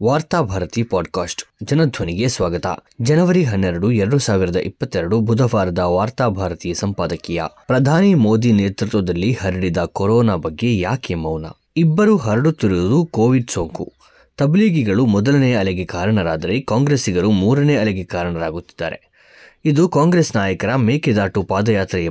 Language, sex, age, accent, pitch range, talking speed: Kannada, male, 20-39, native, 95-135 Hz, 100 wpm